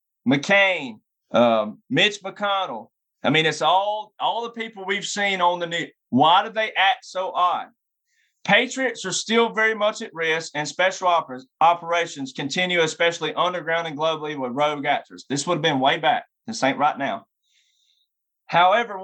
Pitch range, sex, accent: 175-220 Hz, male, American